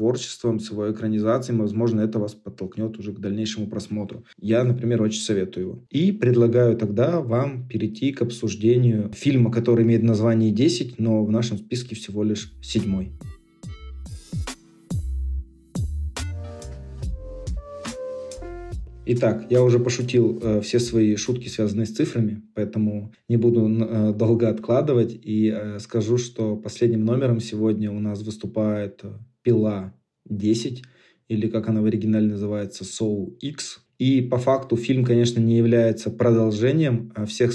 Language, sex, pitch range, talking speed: Russian, male, 105-120 Hz, 125 wpm